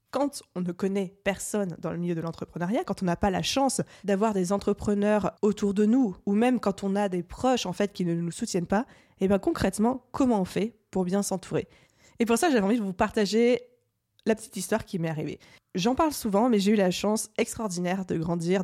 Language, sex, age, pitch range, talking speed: French, female, 20-39, 180-220 Hz, 225 wpm